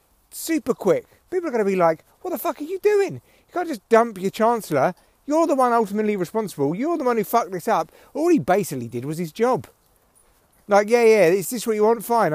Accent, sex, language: British, male, English